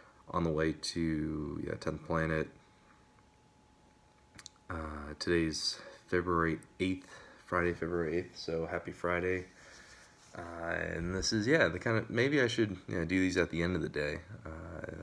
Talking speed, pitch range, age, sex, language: 155 wpm, 75-90 Hz, 20-39, male, English